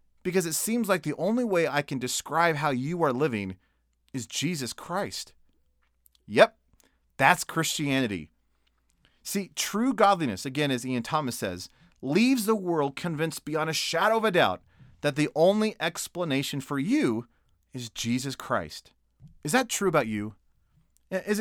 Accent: American